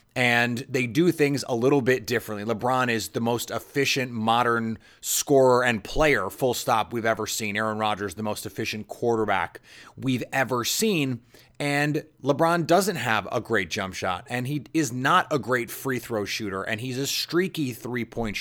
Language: English